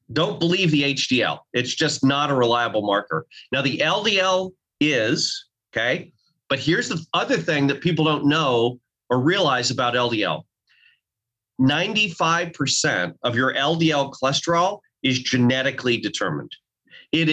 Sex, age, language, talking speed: male, 30-49, English, 130 wpm